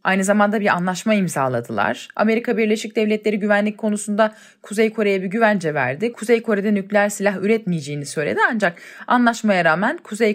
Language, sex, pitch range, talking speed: Turkish, female, 195-235 Hz, 145 wpm